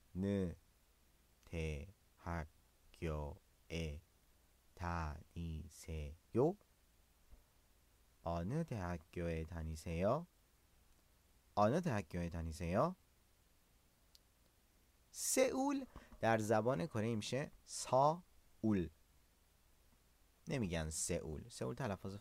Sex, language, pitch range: male, English, 80-110 Hz